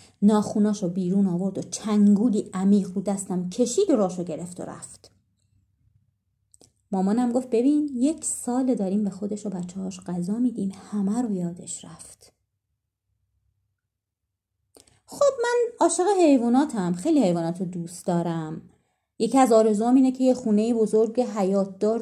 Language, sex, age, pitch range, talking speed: Persian, female, 30-49, 175-245 Hz, 125 wpm